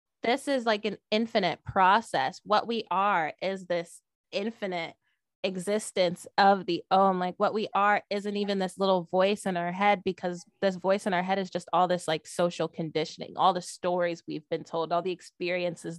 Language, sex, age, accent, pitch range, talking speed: English, female, 20-39, American, 175-205 Hz, 190 wpm